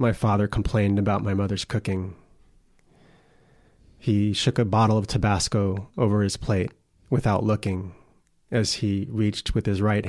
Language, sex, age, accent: English, male, 30-49, American